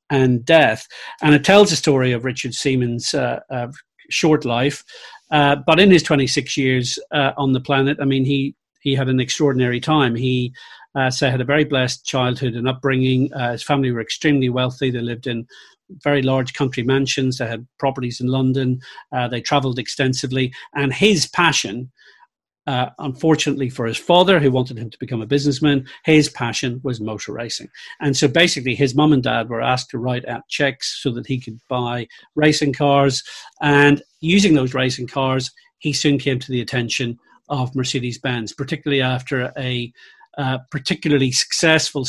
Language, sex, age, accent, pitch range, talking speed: English, male, 40-59, British, 125-145 Hz, 175 wpm